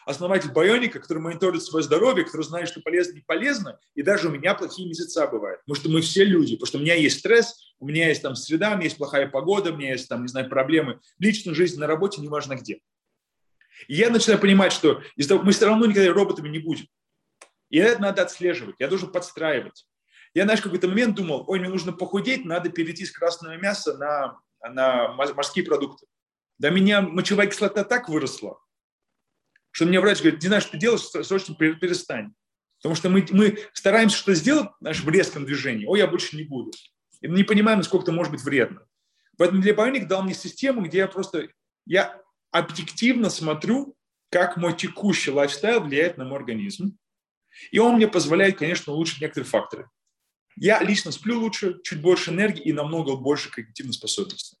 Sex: male